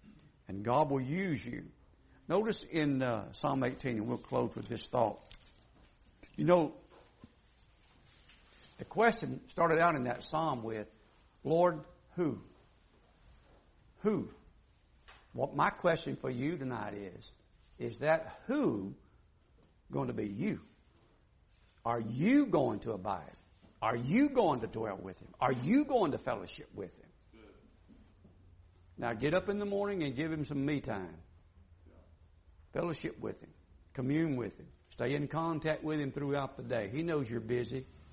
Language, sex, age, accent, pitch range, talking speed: English, male, 60-79, American, 95-155 Hz, 145 wpm